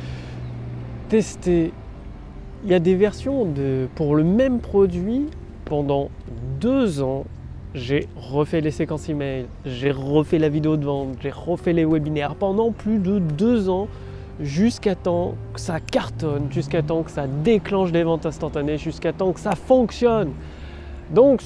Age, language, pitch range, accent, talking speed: 30-49, French, 140-195 Hz, French, 150 wpm